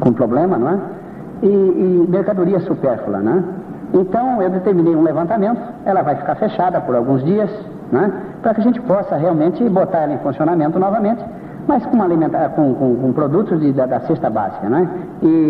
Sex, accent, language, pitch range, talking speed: male, Brazilian, Portuguese, 135-185 Hz, 180 wpm